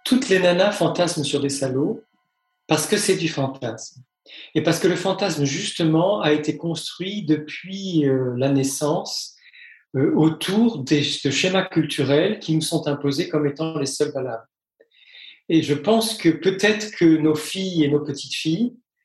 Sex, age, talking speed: male, 40-59, 155 wpm